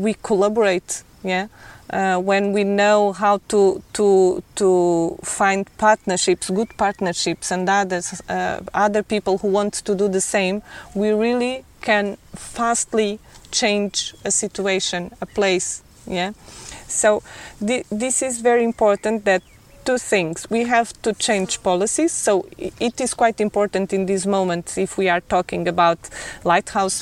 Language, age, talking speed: English, 20-39, 140 wpm